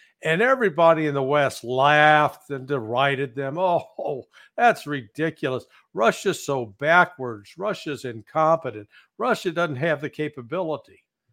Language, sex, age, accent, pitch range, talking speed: English, male, 60-79, American, 135-180 Hz, 115 wpm